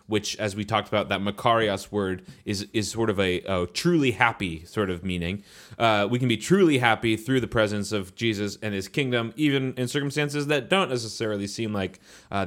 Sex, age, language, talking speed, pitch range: male, 20-39, English, 200 wpm, 105-135 Hz